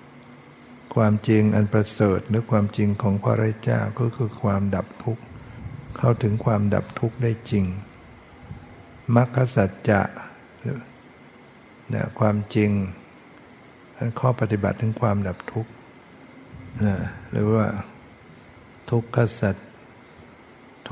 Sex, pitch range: male, 100-115 Hz